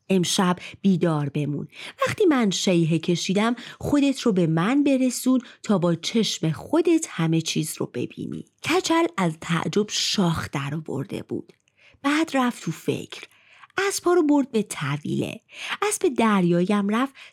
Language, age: Persian, 30-49